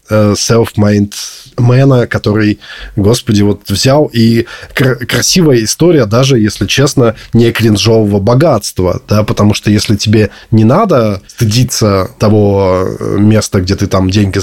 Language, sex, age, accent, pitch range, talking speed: Russian, male, 20-39, native, 100-120 Hz, 125 wpm